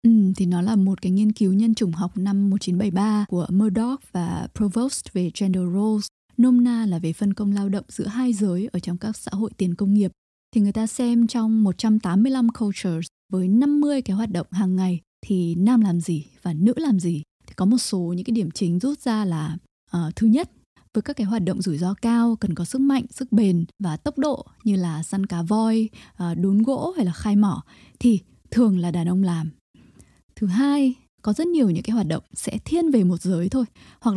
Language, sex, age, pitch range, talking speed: Vietnamese, female, 20-39, 185-230 Hz, 220 wpm